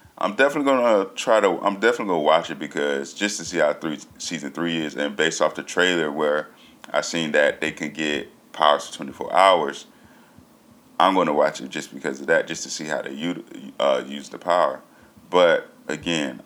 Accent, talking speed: American, 210 wpm